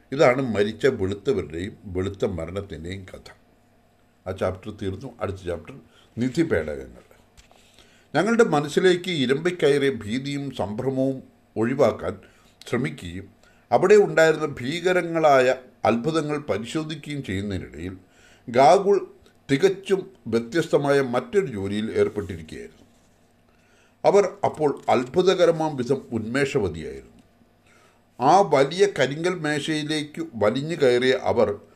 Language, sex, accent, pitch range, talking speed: English, male, Indian, 110-155 Hz, 85 wpm